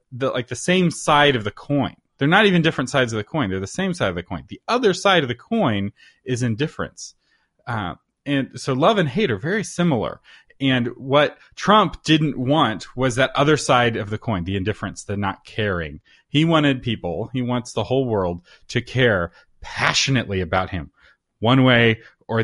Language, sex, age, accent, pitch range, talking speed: English, male, 30-49, American, 110-145 Hz, 195 wpm